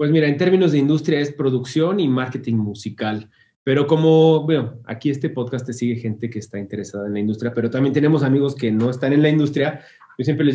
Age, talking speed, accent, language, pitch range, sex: 30-49, 220 wpm, Mexican, Spanish, 125-170 Hz, male